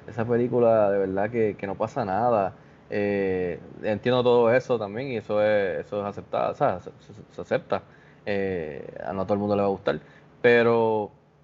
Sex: male